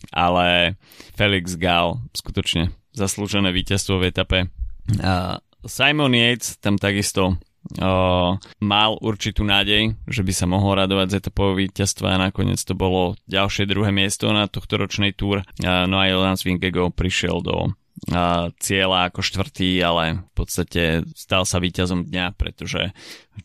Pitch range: 90-105 Hz